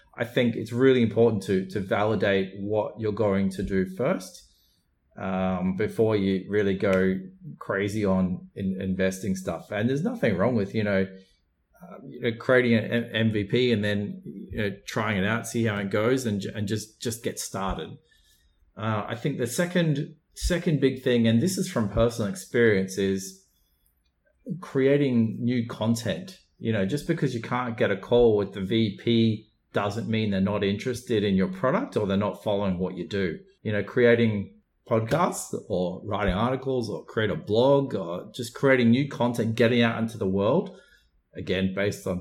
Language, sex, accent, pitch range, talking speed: English, male, Australian, 95-120 Hz, 175 wpm